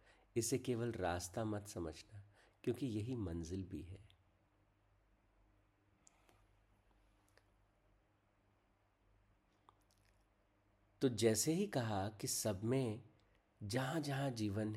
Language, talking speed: Hindi, 80 wpm